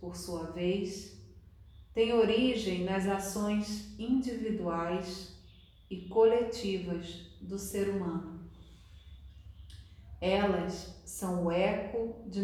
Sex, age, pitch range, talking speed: female, 40-59, 160-200 Hz, 85 wpm